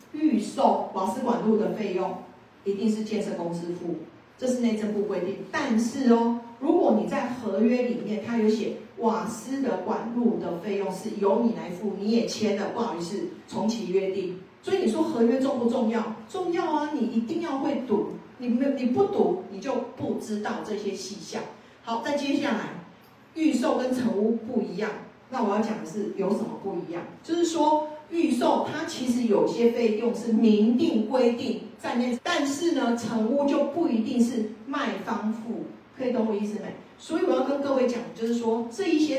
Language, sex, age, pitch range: Chinese, female, 40-59, 210-260 Hz